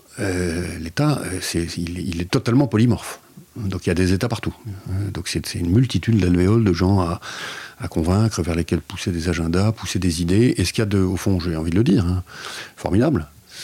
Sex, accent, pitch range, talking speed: male, French, 90-120 Hz, 215 wpm